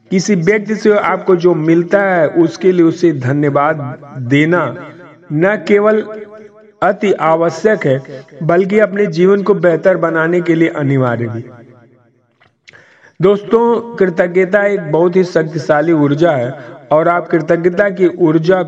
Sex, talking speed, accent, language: male, 130 wpm, native, Hindi